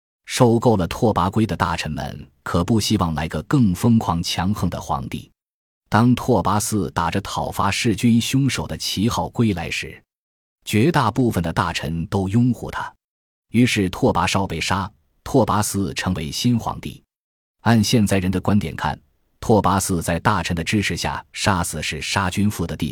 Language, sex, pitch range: Chinese, male, 85-110 Hz